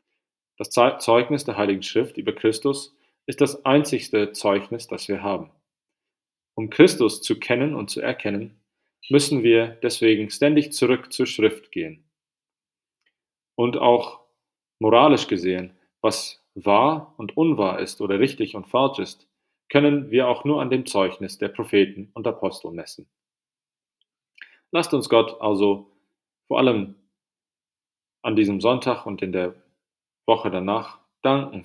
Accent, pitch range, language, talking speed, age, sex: German, 100-125 Hz, English, 135 wpm, 40-59, male